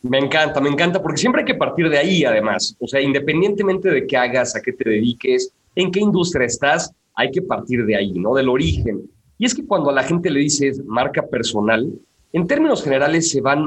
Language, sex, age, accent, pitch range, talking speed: Spanish, male, 40-59, Mexican, 125-185 Hz, 220 wpm